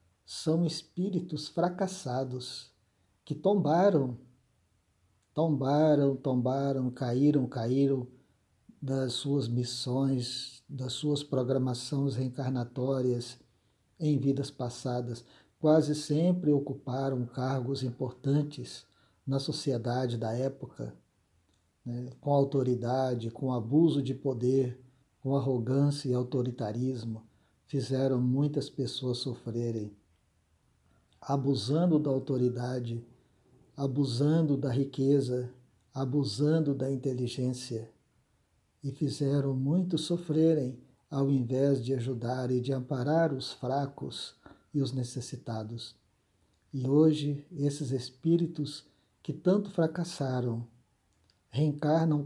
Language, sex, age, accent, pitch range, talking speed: Portuguese, male, 50-69, Brazilian, 125-145 Hz, 85 wpm